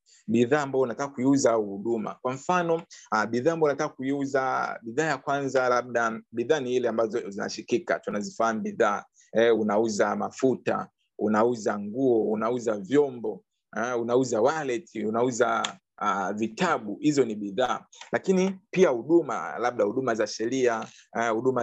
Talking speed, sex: 125 wpm, male